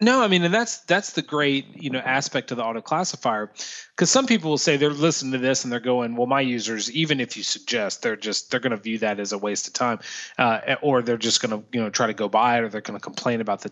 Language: English